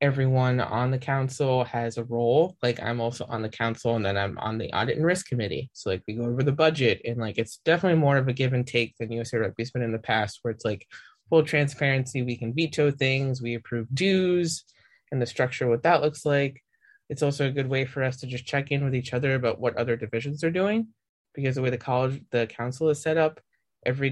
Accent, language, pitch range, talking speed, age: American, English, 120-145 Hz, 240 wpm, 20-39